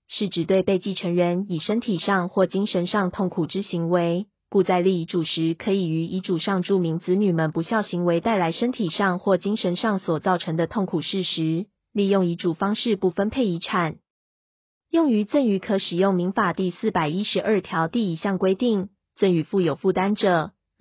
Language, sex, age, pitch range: Chinese, female, 20-39, 175-210 Hz